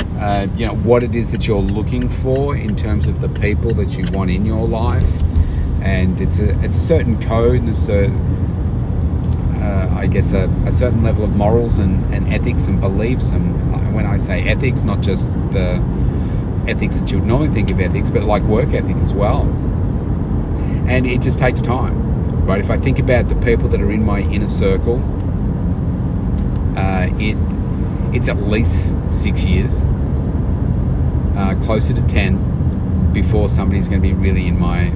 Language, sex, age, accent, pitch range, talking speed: English, male, 40-59, Australian, 80-105 Hz, 180 wpm